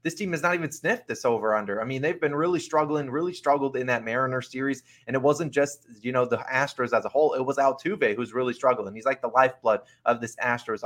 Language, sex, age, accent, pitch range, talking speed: English, male, 20-39, American, 120-145 Hz, 250 wpm